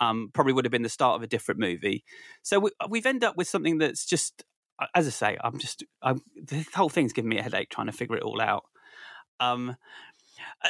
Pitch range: 120-165 Hz